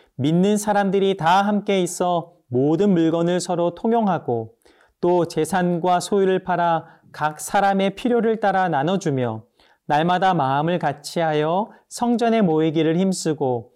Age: 40-59